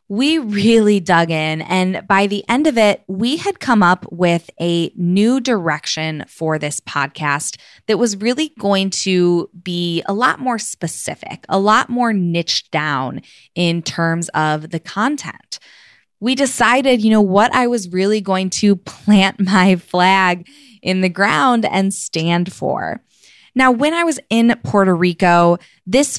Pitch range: 175-235 Hz